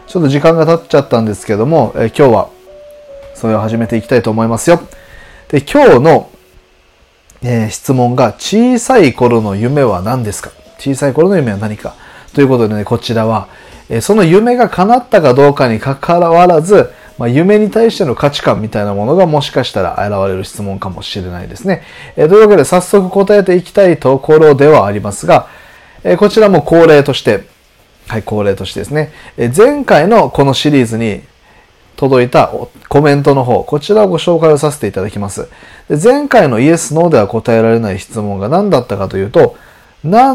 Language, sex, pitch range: Japanese, male, 115-175 Hz